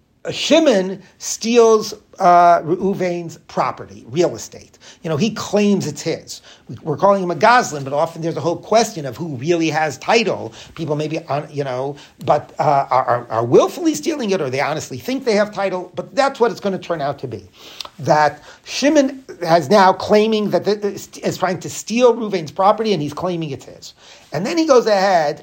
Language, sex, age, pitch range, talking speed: English, male, 40-59, 155-210 Hz, 190 wpm